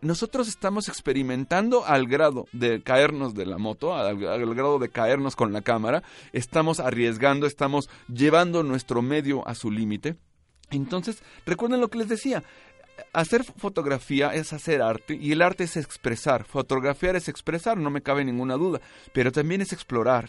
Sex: male